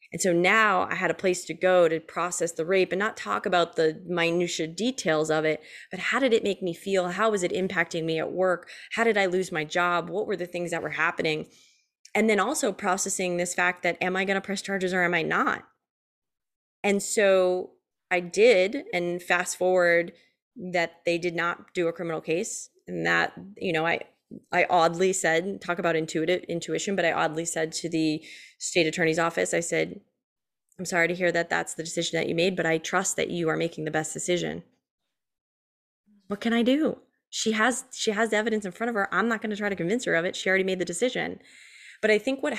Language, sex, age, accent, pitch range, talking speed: English, female, 20-39, American, 165-195 Hz, 220 wpm